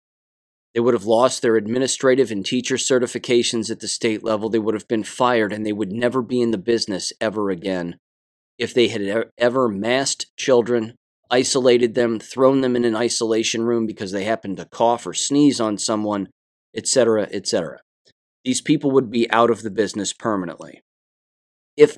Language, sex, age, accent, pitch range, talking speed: English, male, 30-49, American, 100-125 Hz, 175 wpm